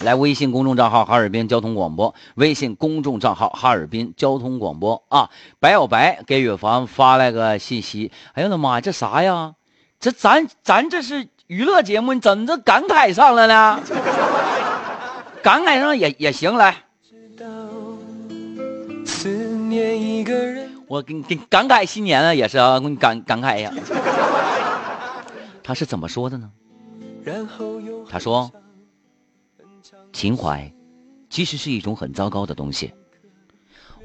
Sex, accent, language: male, native, Chinese